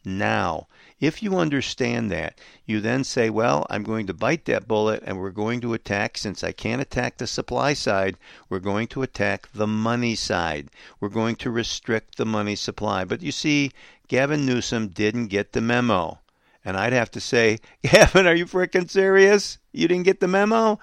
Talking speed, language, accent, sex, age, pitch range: 185 wpm, English, American, male, 50-69, 105-150 Hz